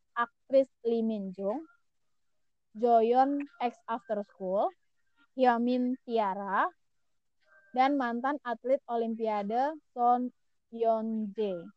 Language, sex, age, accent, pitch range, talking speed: Indonesian, female, 20-39, native, 210-260 Hz, 75 wpm